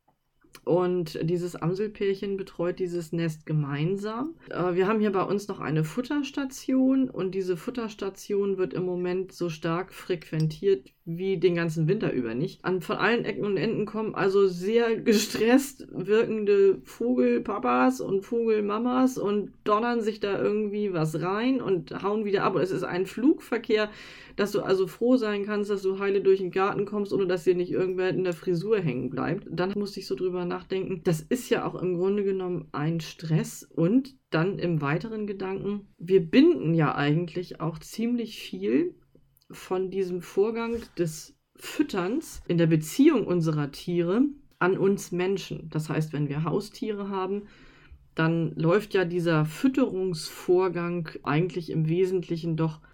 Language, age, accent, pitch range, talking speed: German, 20-39, German, 170-210 Hz, 155 wpm